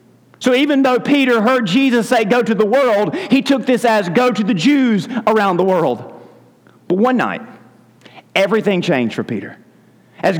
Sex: male